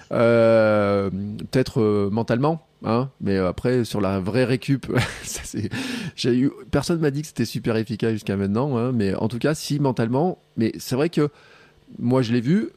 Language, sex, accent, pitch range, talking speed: French, male, French, 105-140 Hz, 190 wpm